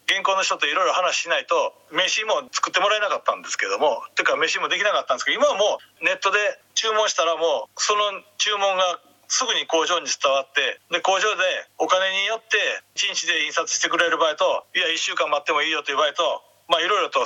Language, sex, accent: Japanese, male, native